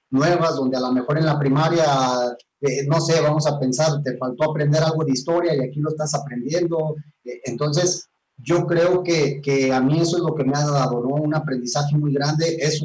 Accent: Mexican